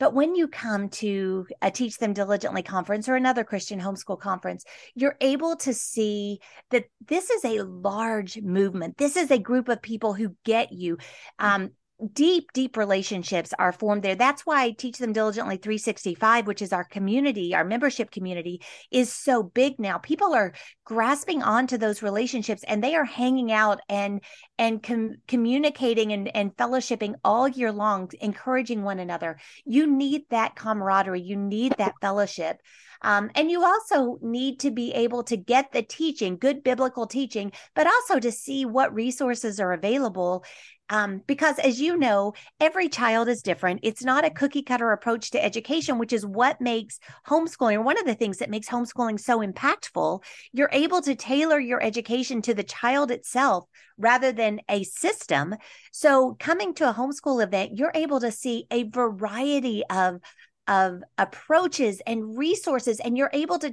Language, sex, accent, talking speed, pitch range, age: English, female, American, 170 wpm, 205-265 Hz, 40-59